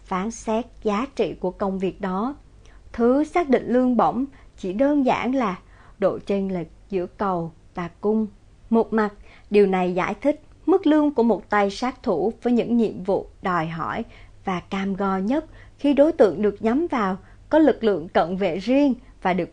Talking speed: 185 wpm